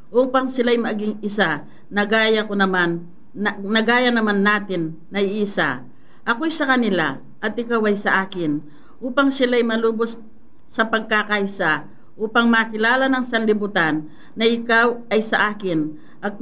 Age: 50-69